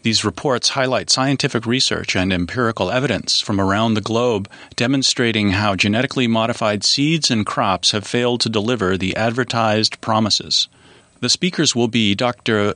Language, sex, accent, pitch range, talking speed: English, male, American, 105-120 Hz, 145 wpm